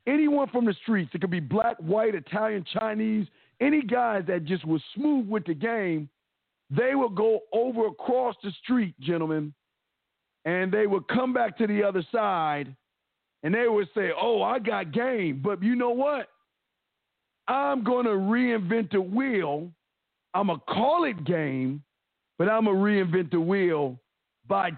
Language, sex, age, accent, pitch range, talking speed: English, male, 50-69, American, 175-225 Hz, 165 wpm